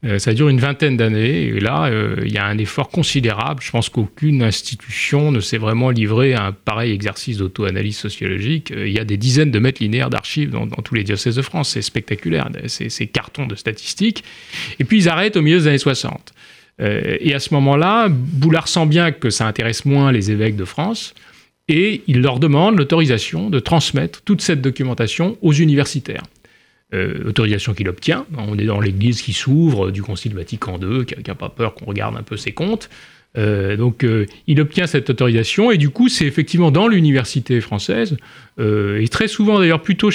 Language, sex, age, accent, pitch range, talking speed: French, male, 30-49, French, 110-155 Hz, 200 wpm